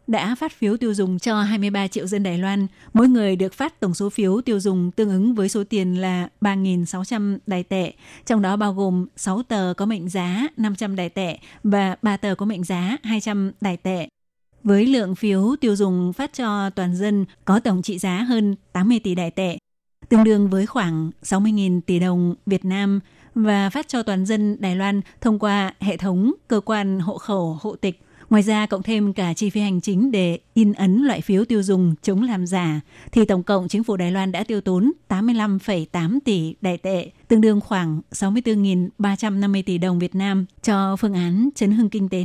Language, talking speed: Vietnamese, 200 wpm